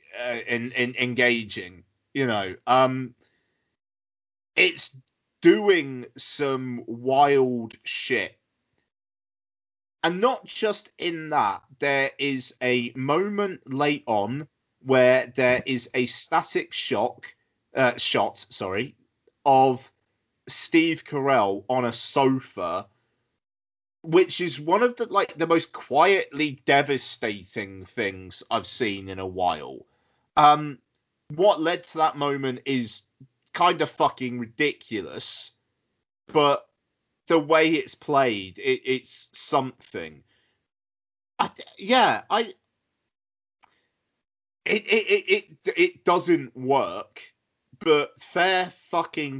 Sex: male